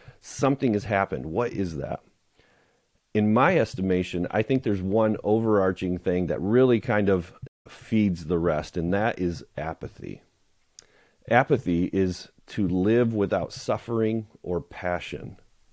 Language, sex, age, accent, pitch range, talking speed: English, male, 40-59, American, 95-110 Hz, 130 wpm